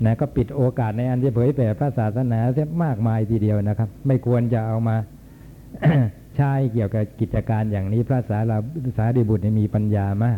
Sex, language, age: male, Thai, 60-79